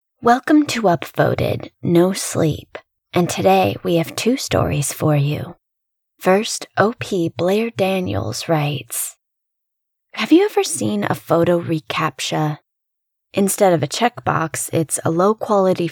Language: English